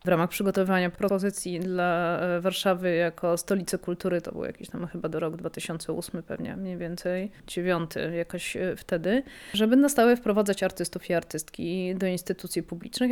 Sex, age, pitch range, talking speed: female, 20-39, 175-205 Hz, 145 wpm